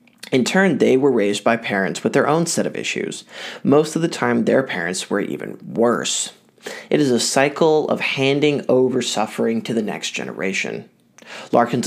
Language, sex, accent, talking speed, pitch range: English, male, American, 175 wpm, 120-155 Hz